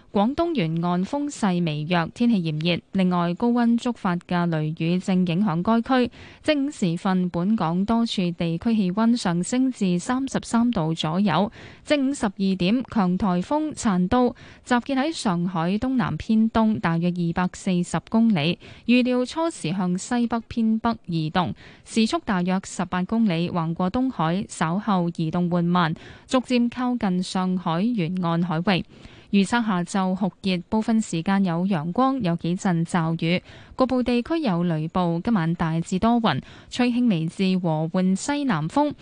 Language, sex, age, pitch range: Chinese, female, 10-29, 175-235 Hz